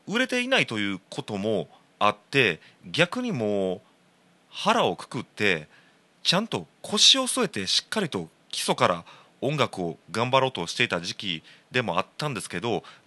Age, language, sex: 30-49, Japanese, male